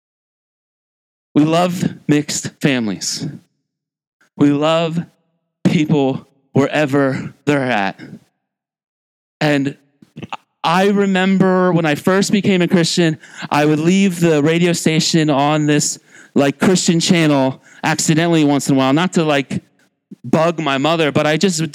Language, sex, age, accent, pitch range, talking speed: English, male, 30-49, American, 155-200 Hz, 125 wpm